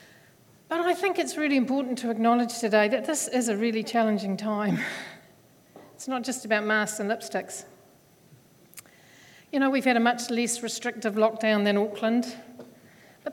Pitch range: 205-245 Hz